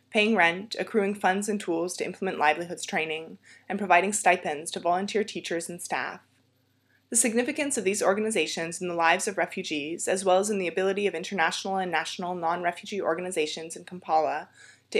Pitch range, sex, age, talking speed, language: 165-205 Hz, female, 20-39, 170 wpm, English